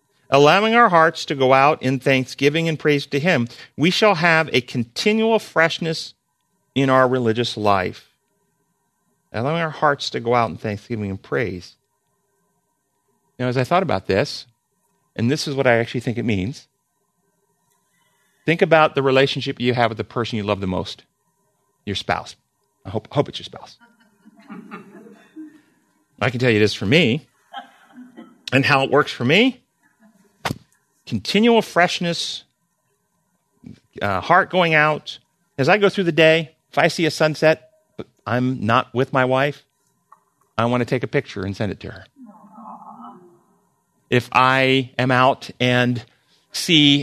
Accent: American